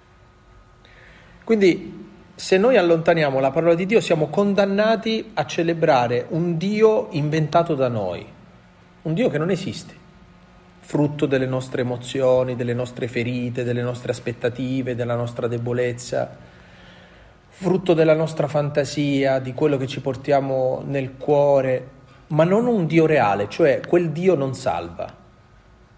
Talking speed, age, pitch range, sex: 130 wpm, 40-59, 125-170 Hz, male